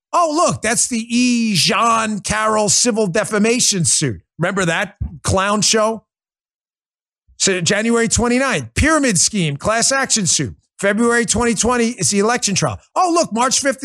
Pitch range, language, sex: 160-240 Hz, English, male